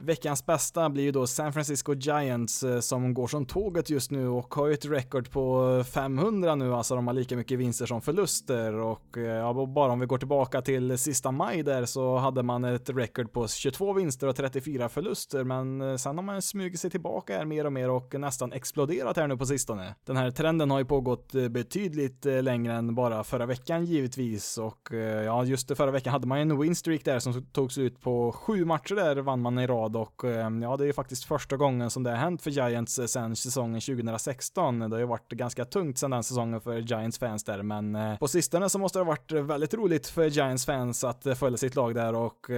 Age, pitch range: 20-39, 125-150 Hz